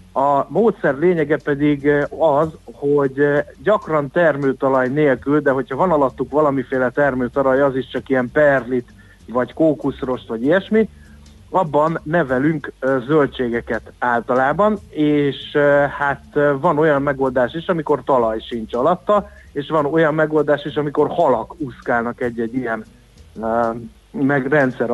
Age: 60-79